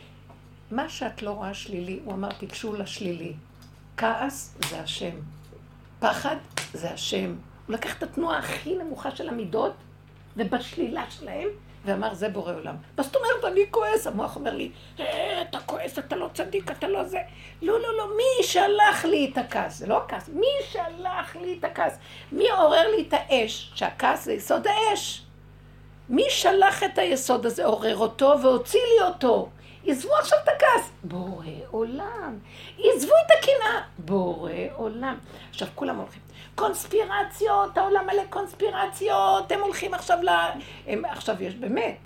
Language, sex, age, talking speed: Hebrew, female, 60-79, 150 wpm